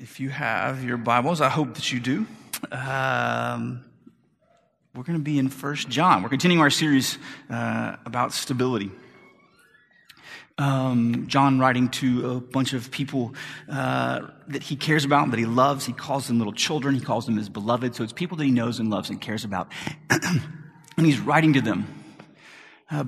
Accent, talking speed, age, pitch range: American, 175 wpm, 30-49, 120-150 Hz